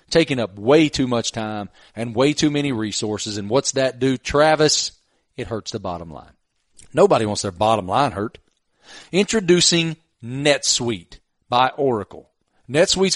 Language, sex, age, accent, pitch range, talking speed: English, male, 40-59, American, 115-150 Hz, 145 wpm